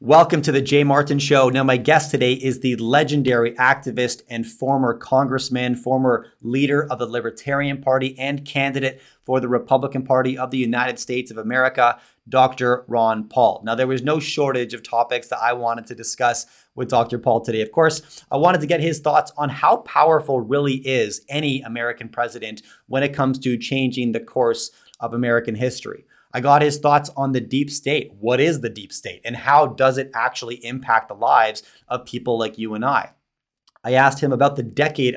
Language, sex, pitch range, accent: English, male, 120-140 Hz, American